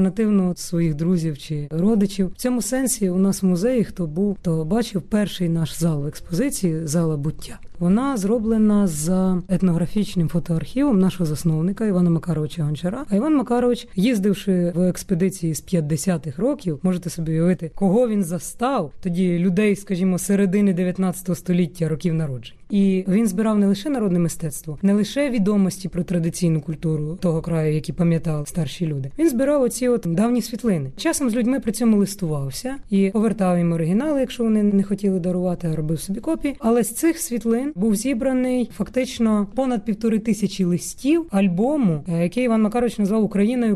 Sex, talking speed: female, 160 wpm